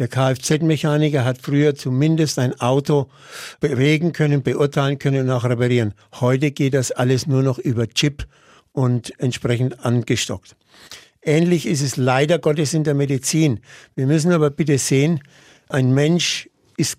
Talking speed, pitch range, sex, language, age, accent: 145 wpm, 130-155 Hz, male, German, 60-79, German